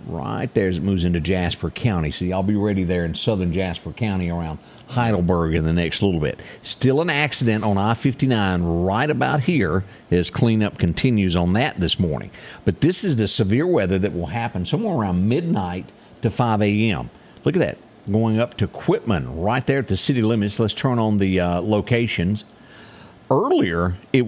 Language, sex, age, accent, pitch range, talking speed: English, male, 50-69, American, 95-115 Hz, 185 wpm